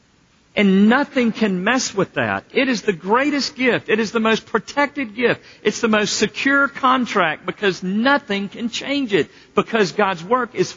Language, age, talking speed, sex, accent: English, 50-69, 175 wpm, male, American